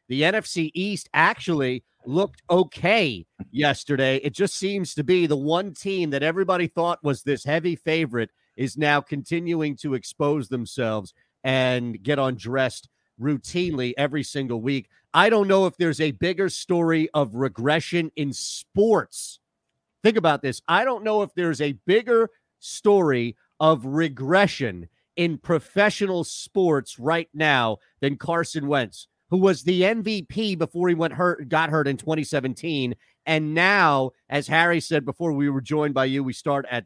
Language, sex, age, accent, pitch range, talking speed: English, male, 40-59, American, 135-175 Hz, 155 wpm